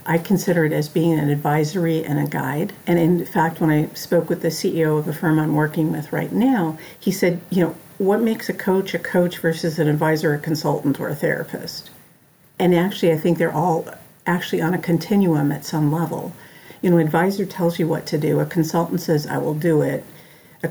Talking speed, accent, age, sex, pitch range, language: 215 wpm, American, 50-69, female, 155-175 Hz, English